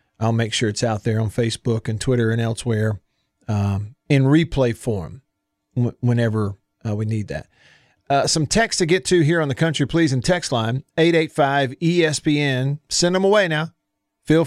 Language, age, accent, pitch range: English, 40-59, American, 115-160 Hz